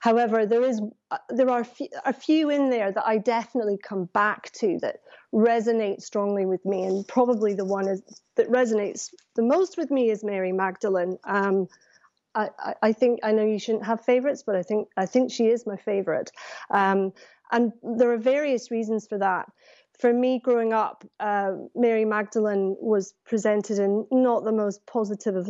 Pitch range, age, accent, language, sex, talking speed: 200-235 Hz, 30-49, British, English, female, 180 wpm